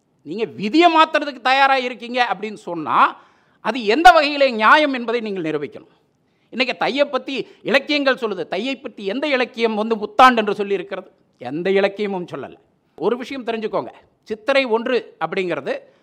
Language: Tamil